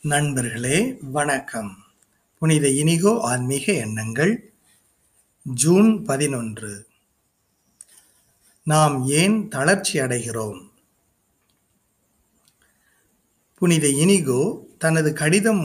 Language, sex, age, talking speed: Tamil, male, 50-69, 60 wpm